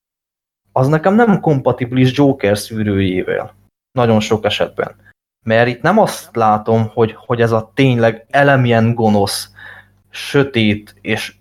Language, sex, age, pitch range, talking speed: Hungarian, male, 20-39, 105-140 Hz, 120 wpm